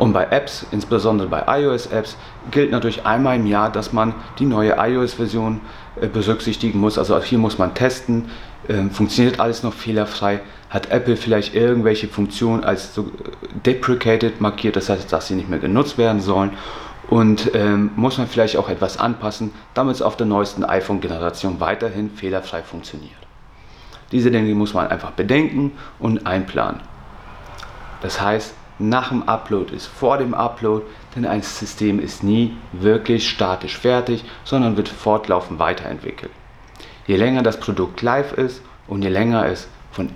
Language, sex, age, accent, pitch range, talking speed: German, male, 30-49, German, 100-115 Hz, 150 wpm